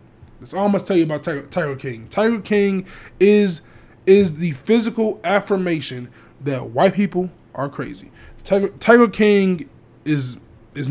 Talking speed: 150 wpm